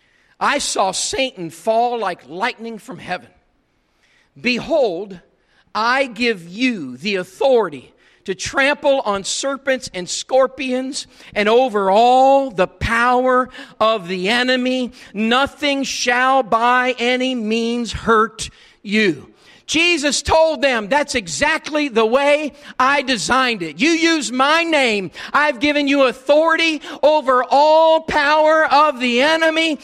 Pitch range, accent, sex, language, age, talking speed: 250-330 Hz, American, male, English, 50-69, 120 wpm